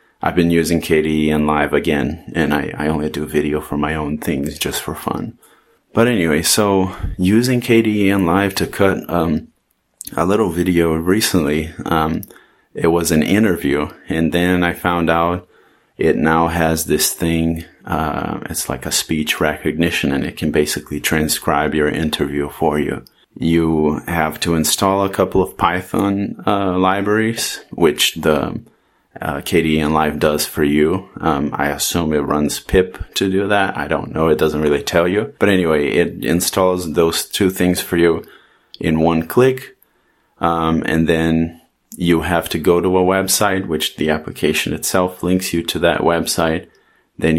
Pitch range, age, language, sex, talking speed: 75-90 Hz, 30-49, English, male, 165 wpm